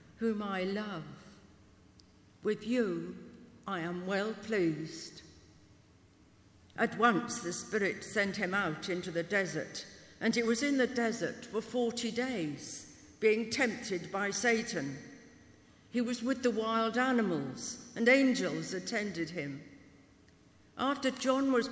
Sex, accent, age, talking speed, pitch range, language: female, British, 60-79, 125 wpm, 175-235 Hz, English